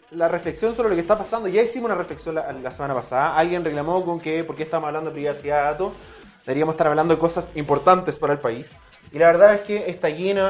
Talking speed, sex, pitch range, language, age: 245 wpm, male, 145-185 Hz, Spanish, 20-39